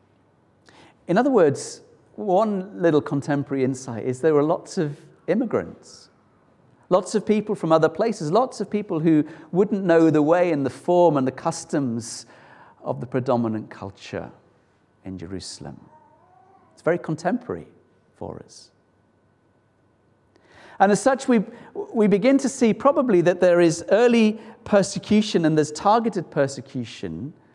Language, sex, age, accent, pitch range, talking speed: English, male, 40-59, British, 145-210 Hz, 135 wpm